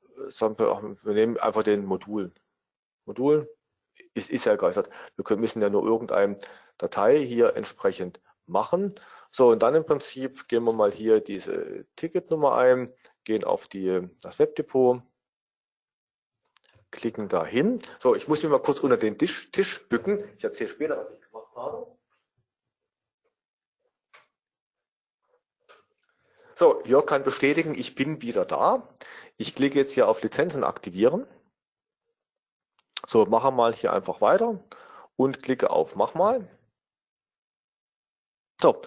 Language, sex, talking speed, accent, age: German, male, 130 wpm, German, 40-59